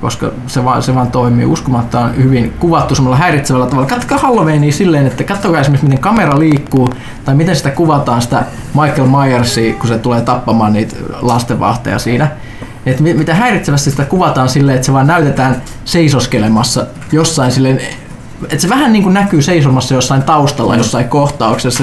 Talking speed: 160 wpm